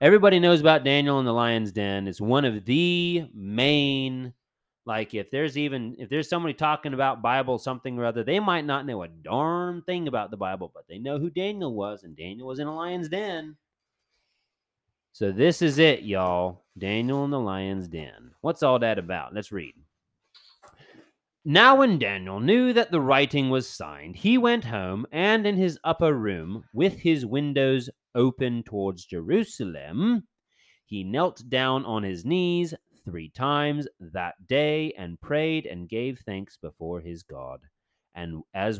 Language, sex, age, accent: English, male, 30-49, American